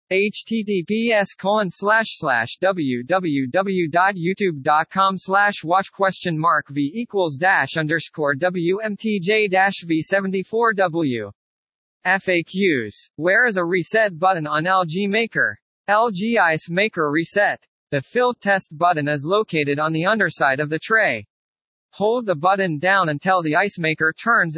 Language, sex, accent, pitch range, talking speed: English, male, American, 160-205 Hz, 110 wpm